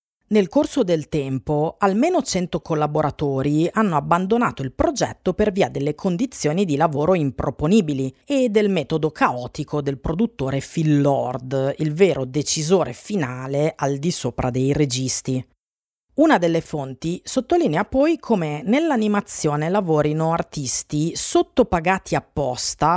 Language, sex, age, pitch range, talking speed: Italian, female, 40-59, 140-200 Hz, 120 wpm